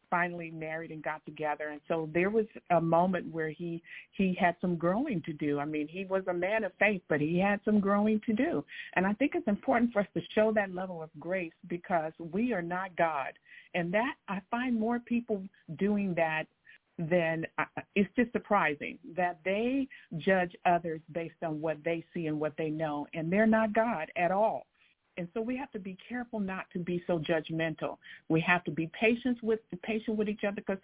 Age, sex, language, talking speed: 50-69, female, English, 205 wpm